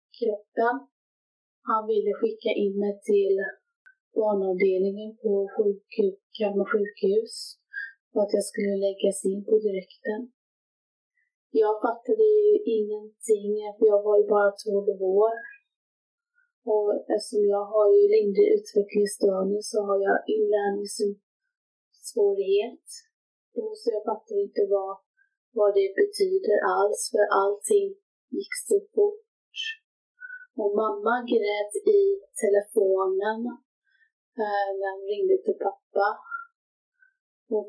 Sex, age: female, 30-49